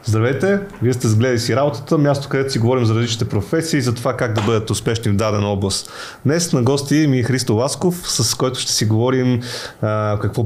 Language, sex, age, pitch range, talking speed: Bulgarian, male, 30-49, 115-140 Hz, 210 wpm